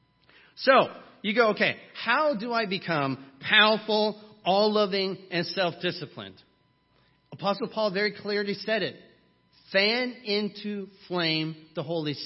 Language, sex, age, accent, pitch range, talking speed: English, male, 40-59, American, 160-215 Hz, 115 wpm